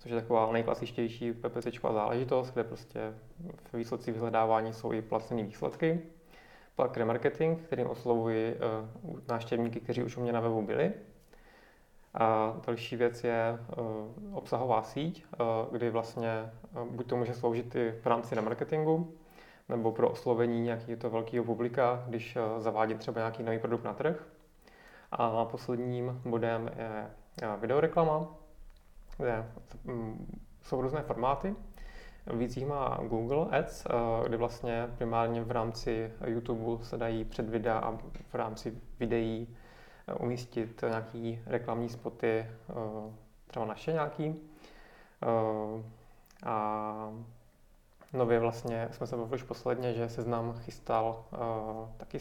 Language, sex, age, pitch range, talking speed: Czech, male, 30-49, 115-120 Hz, 125 wpm